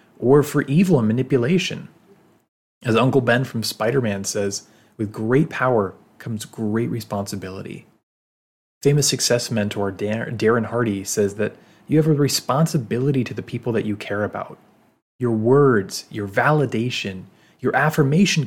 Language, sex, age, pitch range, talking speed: English, male, 30-49, 105-130 Hz, 135 wpm